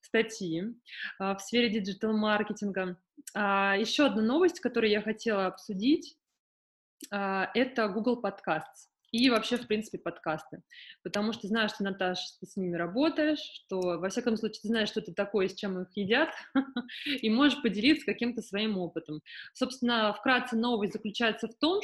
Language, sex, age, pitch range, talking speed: Russian, female, 20-39, 190-245 Hz, 155 wpm